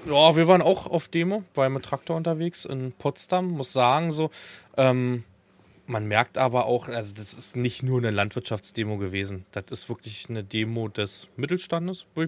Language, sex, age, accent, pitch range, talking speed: German, male, 20-39, German, 110-140 Hz, 170 wpm